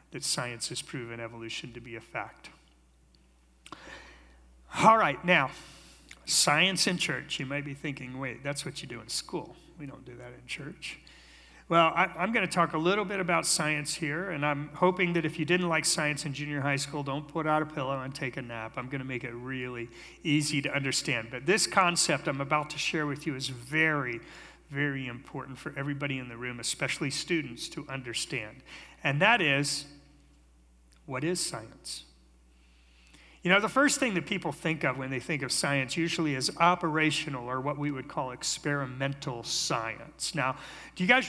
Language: English